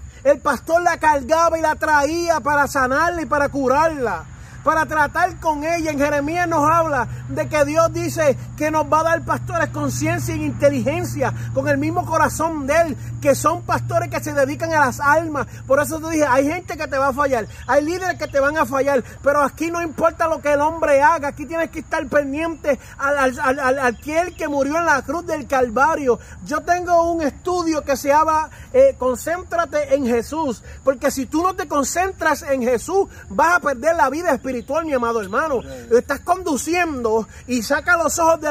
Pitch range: 275-335 Hz